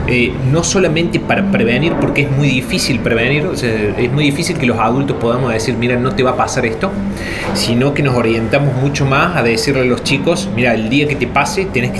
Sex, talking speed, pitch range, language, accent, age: male, 230 wpm, 110-140 Hz, Spanish, Argentinian, 30-49